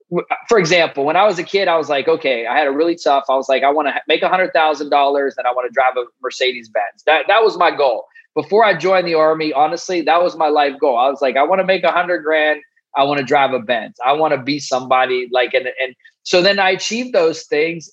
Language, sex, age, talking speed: English, male, 20-39, 270 wpm